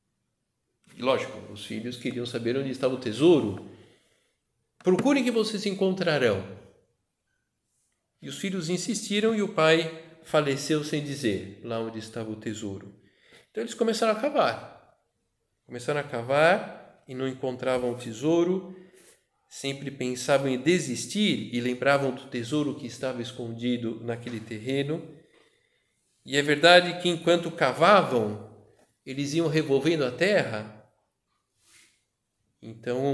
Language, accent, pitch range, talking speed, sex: Portuguese, Brazilian, 125-185 Hz, 120 wpm, male